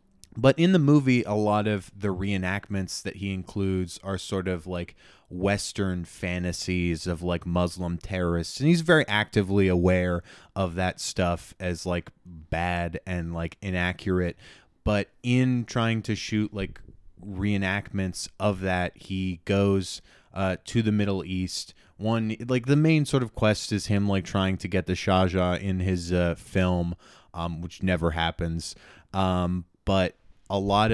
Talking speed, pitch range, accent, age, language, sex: 155 wpm, 90-105 Hz, American, 20-39, English, male